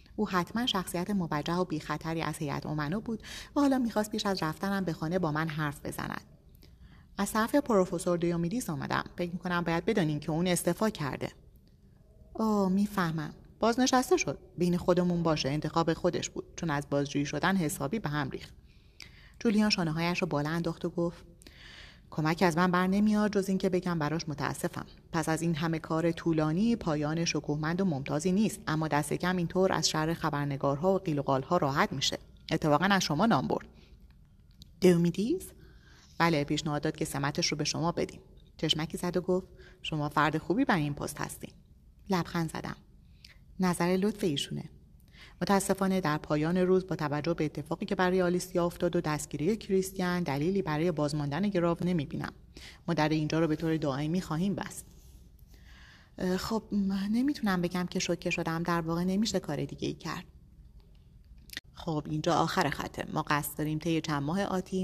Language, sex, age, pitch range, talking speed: Persian, female, 30-49, 150-185 Hz, 165 wpm